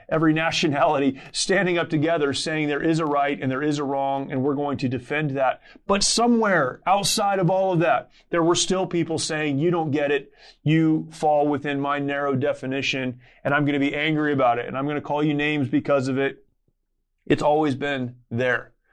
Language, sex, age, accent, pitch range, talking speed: English, male, 30-49, American, 145-175 Hz, 205 wpm